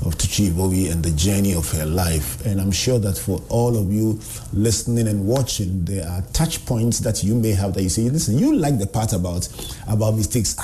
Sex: male